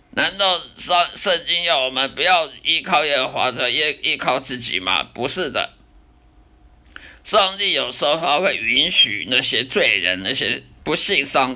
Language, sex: Chinese, male